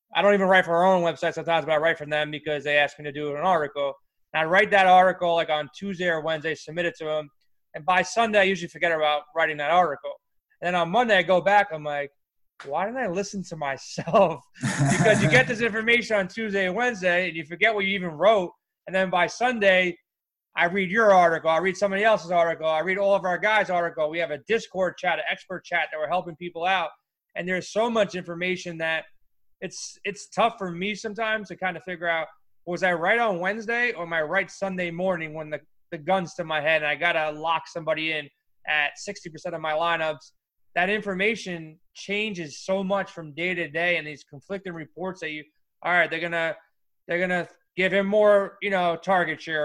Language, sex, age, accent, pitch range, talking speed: English, male, 20-39, American, 160-195 Hz, 225 wpm